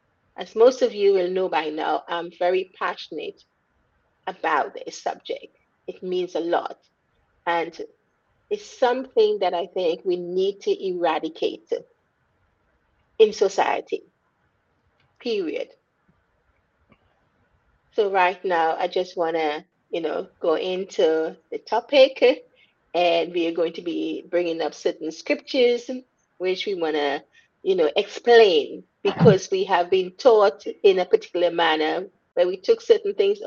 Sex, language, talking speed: female, English, 135 wpm